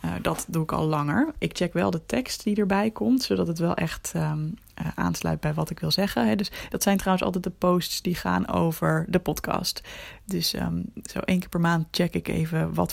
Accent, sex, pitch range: Dutch, female, 160-195 Hz